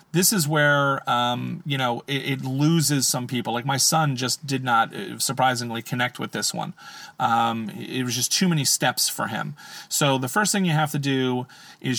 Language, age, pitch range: English, 40-59, 125-155 Hz